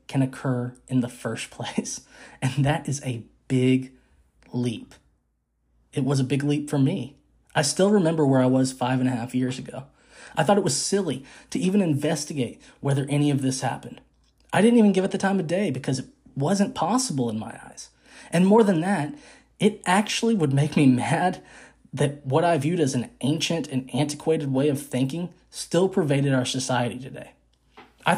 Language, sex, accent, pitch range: English, male, American, 130-170 Hz